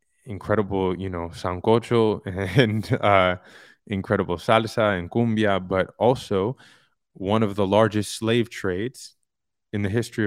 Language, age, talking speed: English, 20-39, 125 wpm